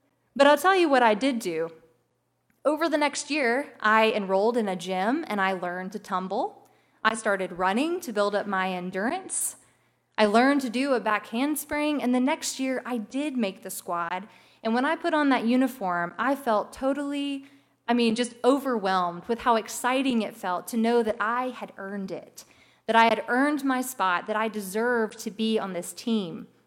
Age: 20-39